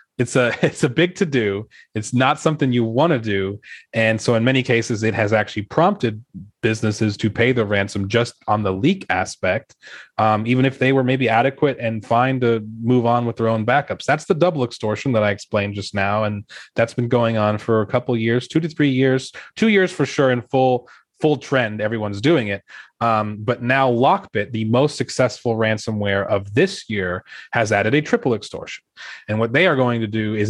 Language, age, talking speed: English, 30-49, 210 wpm